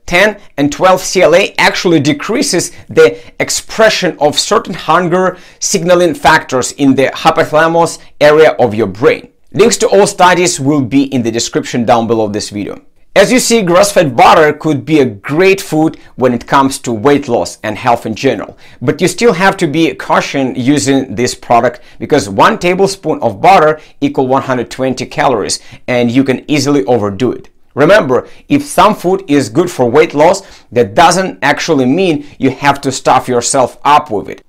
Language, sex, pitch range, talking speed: English, male, 130-175 Hz, 170 wpm